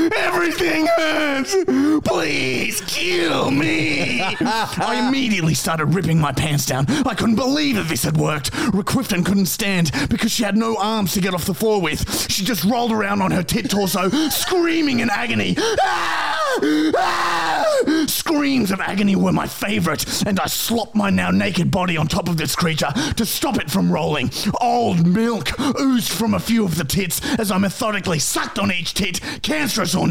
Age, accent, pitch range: 30-49, Australian, 185-260 Hz